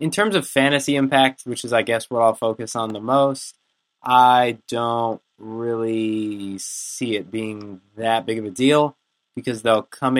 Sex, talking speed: male, 170 wpm